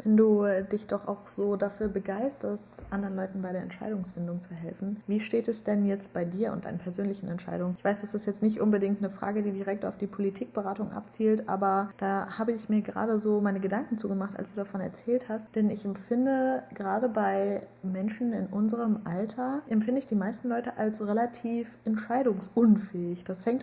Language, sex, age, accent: German, female, 20-39, German